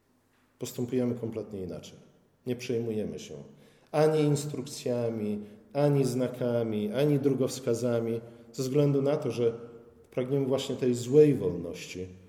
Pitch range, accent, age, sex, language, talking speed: 100-135 Hz, native, 40-59, male, Polish, 105 wpm